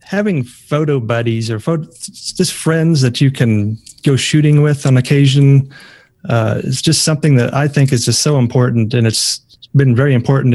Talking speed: 170 wpm